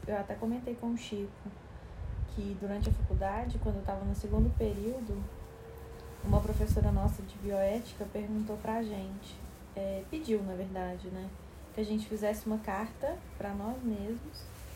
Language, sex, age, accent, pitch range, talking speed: Portuguese, female, 10-29, Brazilian, 175-230 Hz, 160 wpm